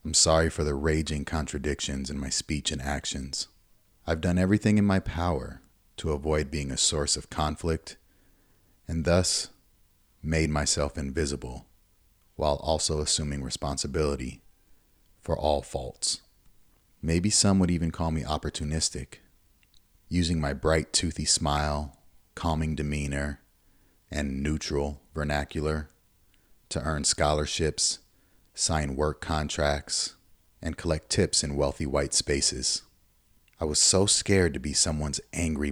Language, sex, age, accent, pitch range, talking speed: English, male, 30-49, American, 75-95 Hz, 125 wpm